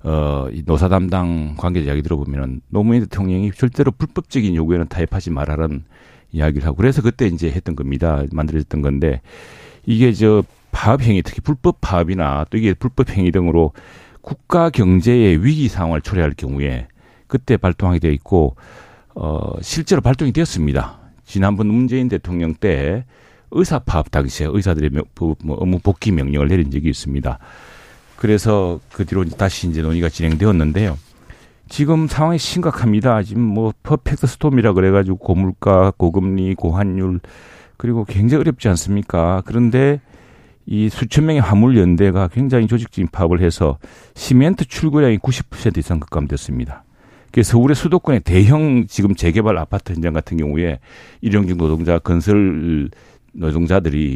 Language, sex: Korean, male